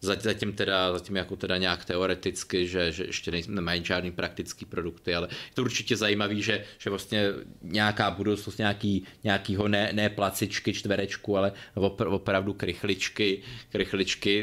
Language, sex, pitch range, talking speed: Czech, male, 90-105 Hz, 155 wpm